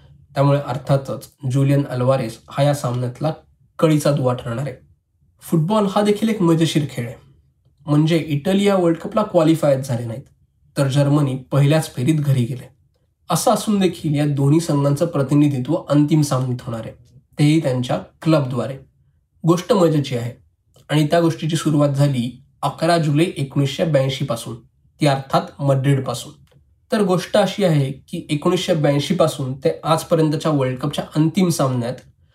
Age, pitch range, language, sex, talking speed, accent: 20-39, 135-165 Hz, Marathi, male, 140 wpm, native